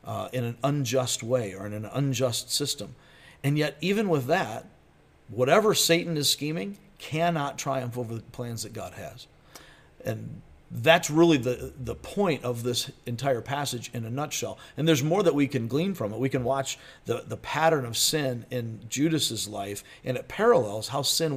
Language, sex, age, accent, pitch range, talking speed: English, male, 50-69, American, 120-155 Hz, 185 wpm